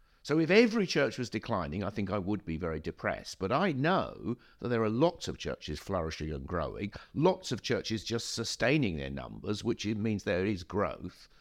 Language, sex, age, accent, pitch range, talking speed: English, male, 50-69, British, 80-115 Hz, 195 wpm